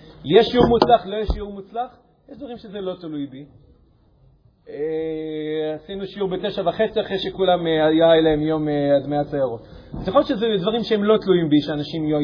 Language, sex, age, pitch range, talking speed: Hebrew, male, 40-59, 150-200 Hz, 110 wpm